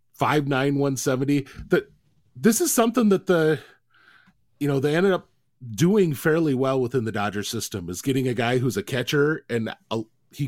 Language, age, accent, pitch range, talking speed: English, 30-49, American, 125-155 Hz, 170 wpm